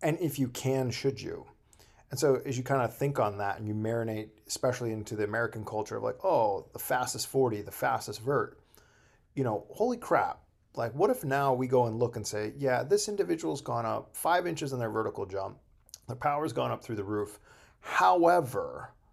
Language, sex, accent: English, male, American